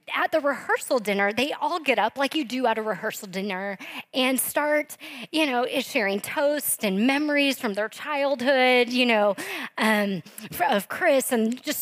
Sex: female